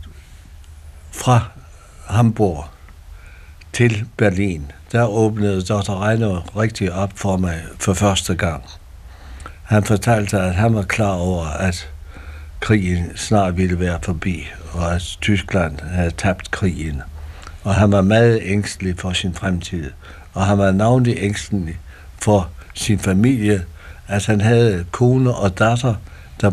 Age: 60-79